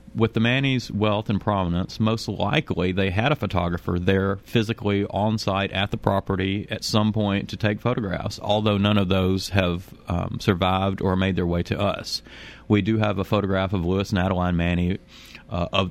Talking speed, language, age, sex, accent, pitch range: 190 wpm, English, 40-59, male, American, 90-105 Hz